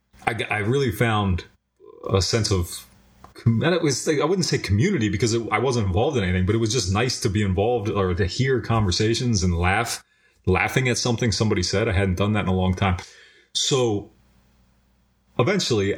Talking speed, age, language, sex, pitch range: 190 wpm, 30-49, English, male, 95-115 Hz